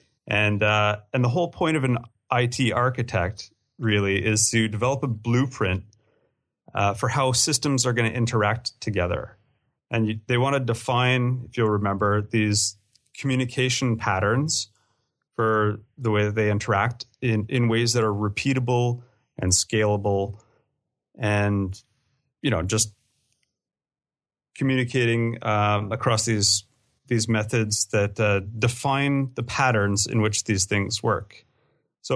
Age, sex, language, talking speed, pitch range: 30-49, male, English, 135 wpm, 105-125 Hz